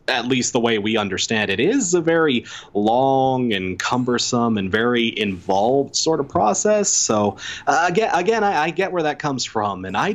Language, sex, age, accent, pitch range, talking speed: English, male, 20-39, American, 120-185 Hz, 195 wpm